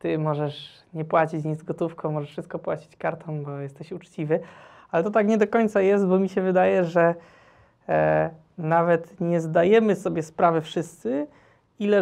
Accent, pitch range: native, 160-190 Hz